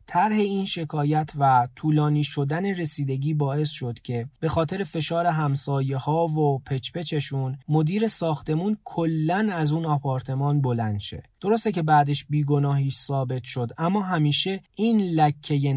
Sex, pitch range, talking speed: male, 135-165 Hz, 135 wpm